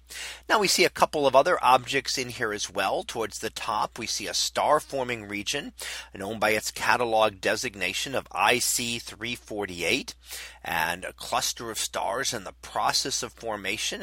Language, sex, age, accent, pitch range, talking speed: English, male, 40-59, American, 110-170 Hz, 165 wpm